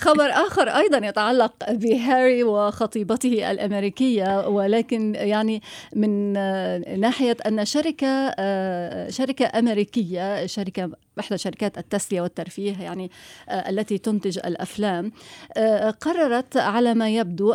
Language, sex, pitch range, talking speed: Arabic, female, 200-270 Hz, 95 wpm